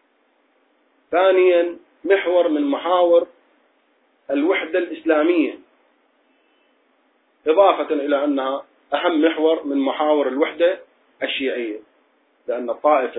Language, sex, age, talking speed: Arabic, male, 40-59, 75 wpm